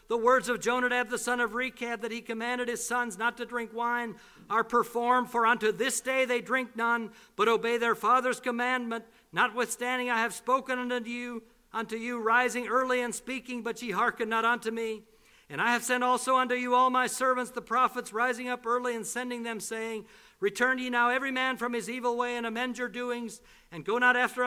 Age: 60-79